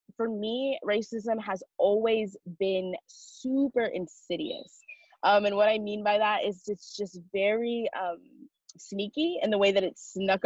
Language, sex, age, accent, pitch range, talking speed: English, female, 20-39, American, 175-215 Hz, 155 wpm